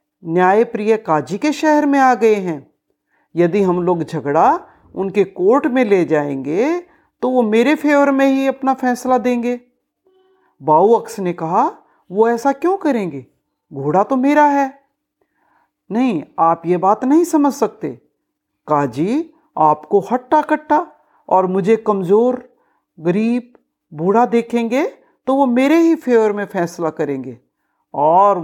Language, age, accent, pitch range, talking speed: Hindi, 50-69, native, 175-280 Hz, 135 wpm